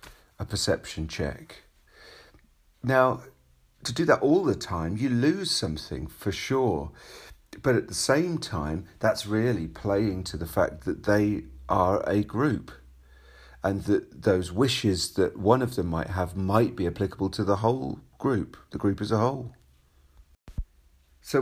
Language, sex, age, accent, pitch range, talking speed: English, male, 40-59, British, 85-115 Hz, 150 wpm